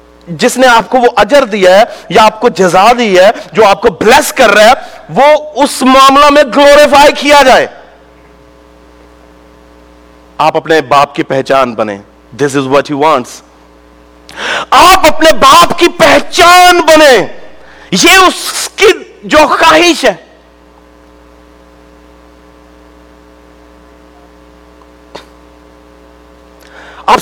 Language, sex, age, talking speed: Urdu, male, 50-69, 115 wpm